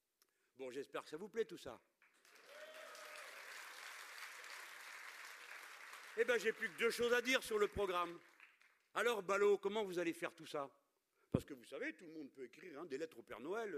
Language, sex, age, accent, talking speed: French, male, 50-69, French, 190 wpm